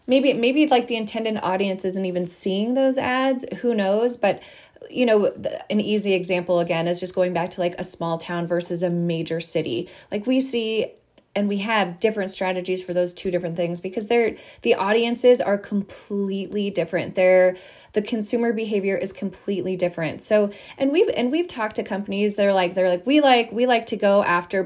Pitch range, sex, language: 180-225 Hz, female, English